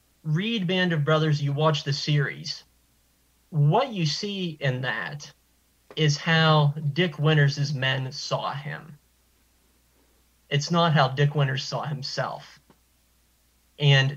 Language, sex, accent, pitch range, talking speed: English, male, American, 135-155 Hz, 120 wpm